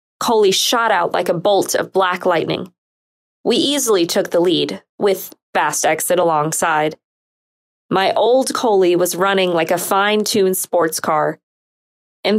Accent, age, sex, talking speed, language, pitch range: American, 20-39, female, 145 wpm, English, 180-225 Hz